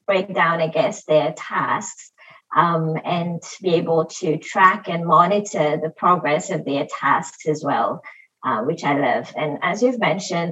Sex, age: female, 30-49